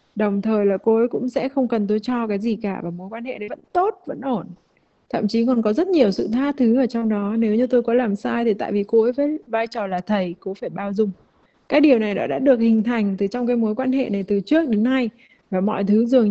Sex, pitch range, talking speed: female, 200-250 Hz, 285 wpm